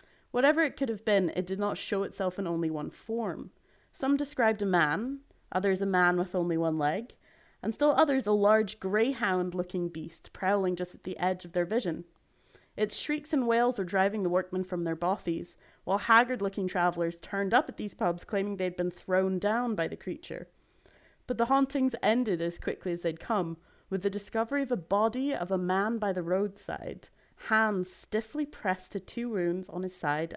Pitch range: 185-255 Hz